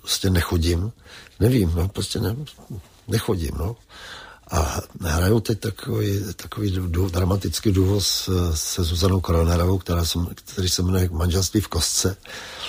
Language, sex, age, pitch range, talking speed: Czech, male, 60-79, 85-100 Hz, 130 wpm